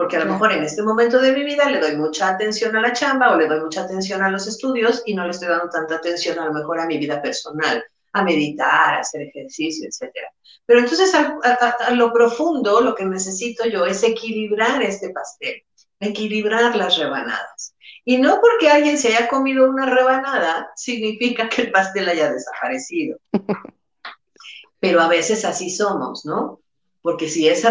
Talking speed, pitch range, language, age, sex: 190 wpm, 175-250 Hz, Spanish, 50-69, female